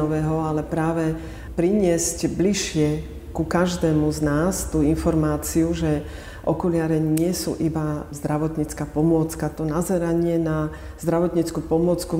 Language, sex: Slovak, female